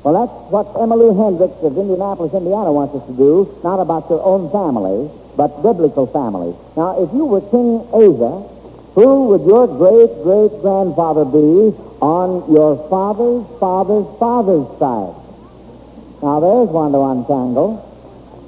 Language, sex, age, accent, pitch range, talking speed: English, male, 60-79, American, 150-220 Hz, 135 wpm